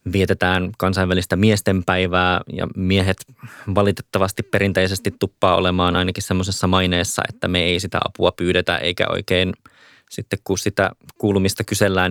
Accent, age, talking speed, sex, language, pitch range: native, 20-39, 125 wpm, male, Finnish, 90-100 Hz